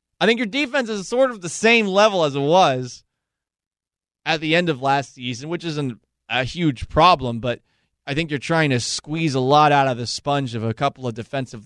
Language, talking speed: English, 215 wpm